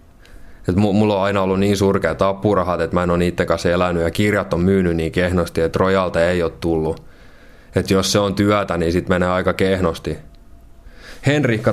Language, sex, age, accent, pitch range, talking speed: Finnish, male, 20-39, native, 85-100 Hz, 190 wpm